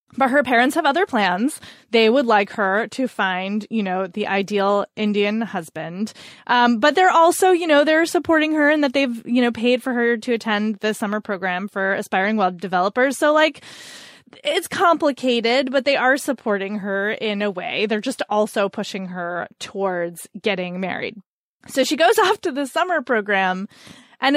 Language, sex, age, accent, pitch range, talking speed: English, female, 20-39, American, 205-285 Hz, 180 wpm